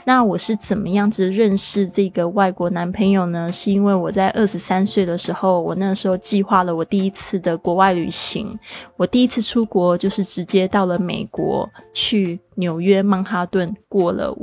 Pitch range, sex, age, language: 185-210 Hz, female, 20-39, Chinese